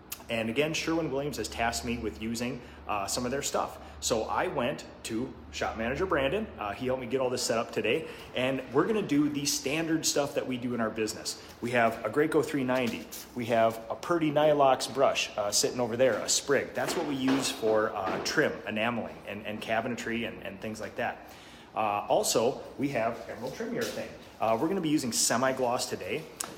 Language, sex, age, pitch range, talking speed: English, male, 30-49, 110-135 Hz, 205 wpm